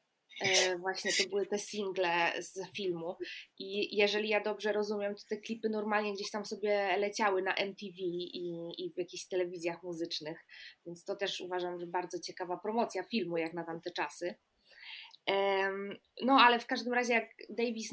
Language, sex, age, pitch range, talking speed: Polish, female, 20-39, 190-230 Hz, 160 wpm